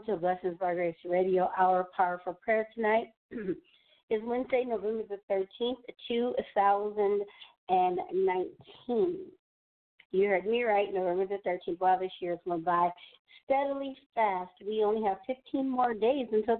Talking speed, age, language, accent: 135 wpm, 50-69, English, American